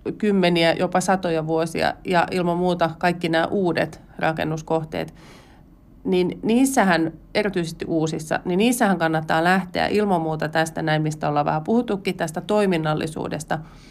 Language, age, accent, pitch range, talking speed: Finnish, 30-49, native, 160-200 Hz, 125 wpm